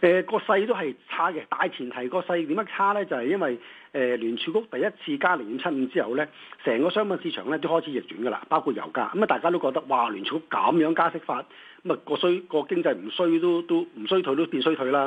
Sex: male